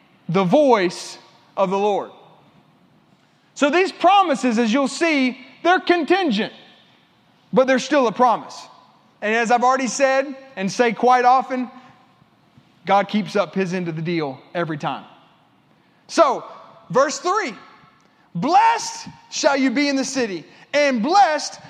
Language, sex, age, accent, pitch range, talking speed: English, male, 30-49, American, 240-310 Hz, 135 wpm